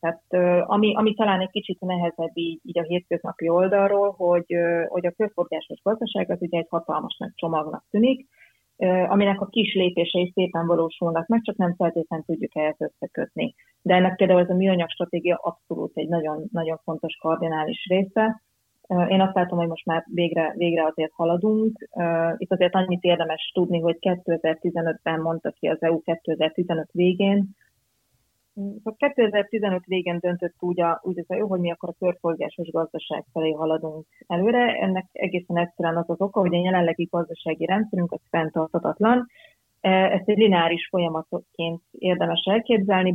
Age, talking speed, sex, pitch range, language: 30-49, 145 wpm, female, 165-190 Hz, Hungarian